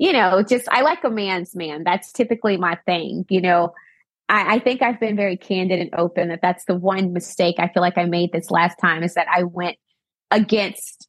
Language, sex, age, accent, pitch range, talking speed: English, female, 20-39, American, 175-210 Hz, 220 wpm